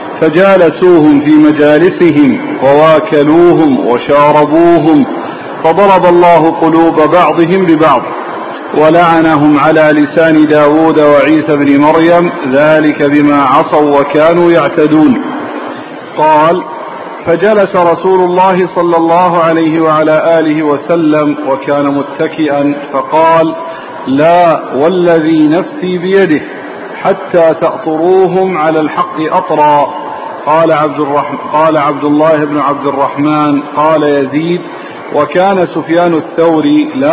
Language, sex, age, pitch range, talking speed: Arabic, male, 50-69, 150-175 Hz, 95 wpm